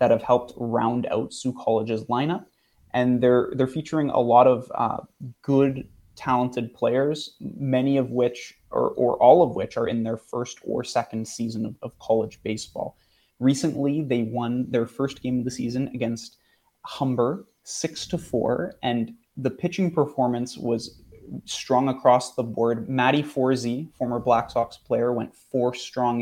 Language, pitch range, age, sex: English, 115-130 Hz, 20-39, male